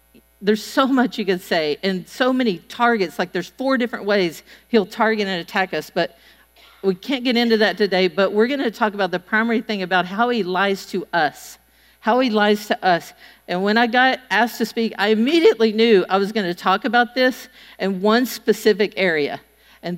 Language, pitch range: English, 185-235 Hz